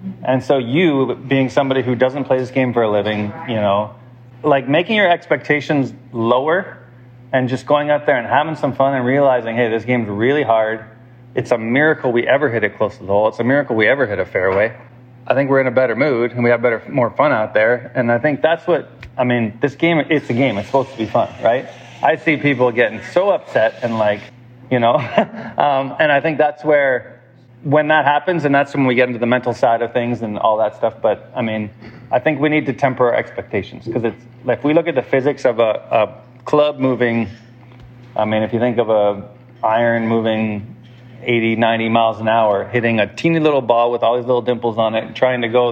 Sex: male